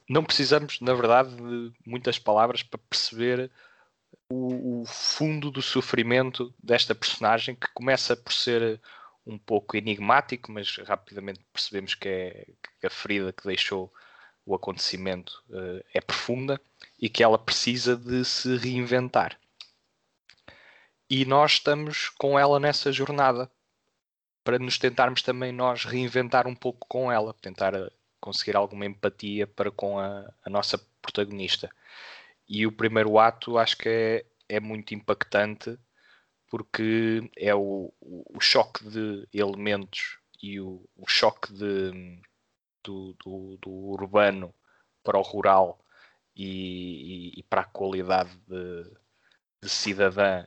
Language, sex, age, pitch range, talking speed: Portuguese, male, 20-39, 100-125 Hz, 130 wpm